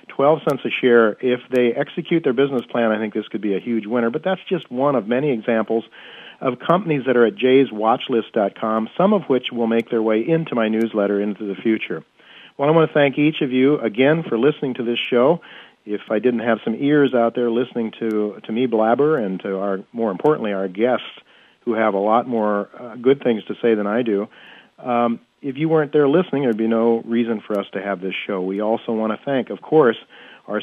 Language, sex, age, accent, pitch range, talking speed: English, male, 50-69, American, 110-135 Hz, 225 wpm